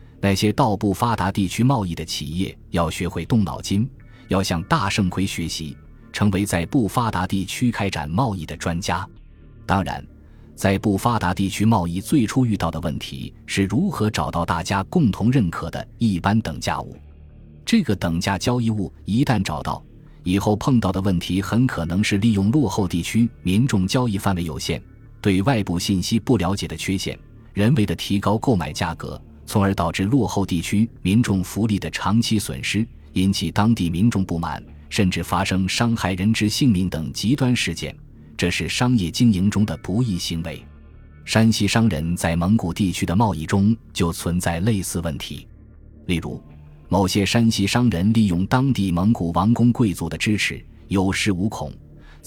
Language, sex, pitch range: Chinese, male, 85-110 Hz